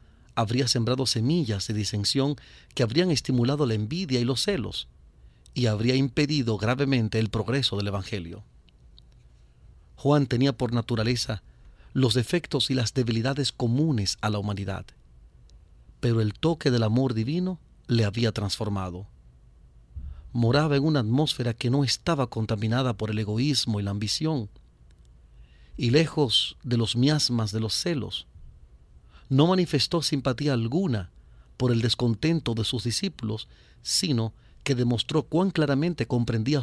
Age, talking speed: 40-59, 135 wpm